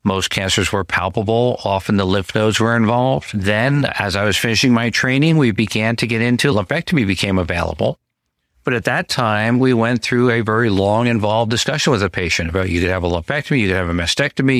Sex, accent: male, American